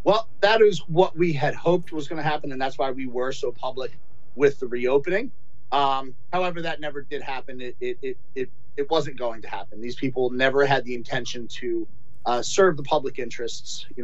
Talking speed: 205 wpm